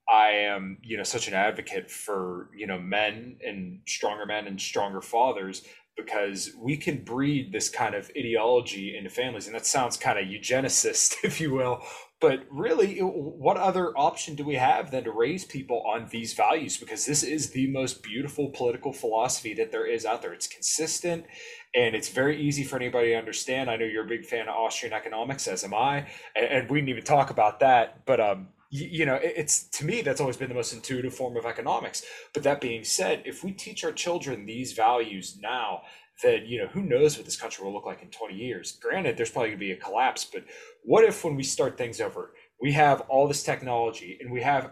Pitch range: 115-180 Hz